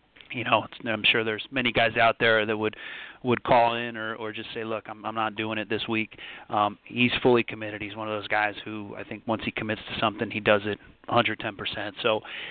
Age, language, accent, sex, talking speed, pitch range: 30-49, English, American, male, 235 wpm, 105-115 Hz